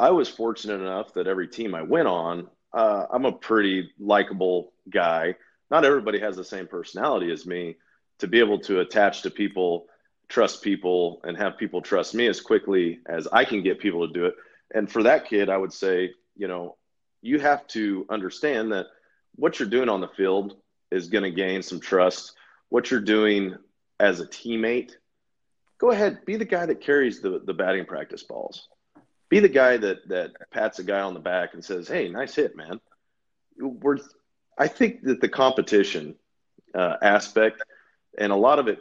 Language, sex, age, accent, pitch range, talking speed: English, male, 30-49, American, 95-150 Hz, 190 wpm